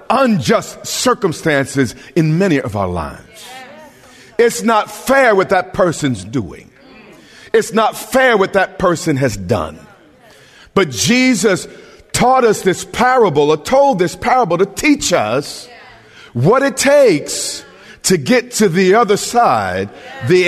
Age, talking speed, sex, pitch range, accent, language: 50-69, 130 wpm, male, 140-220 Hz, American, English